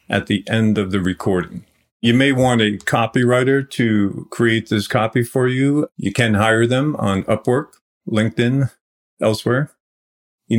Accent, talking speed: American, 145 wpm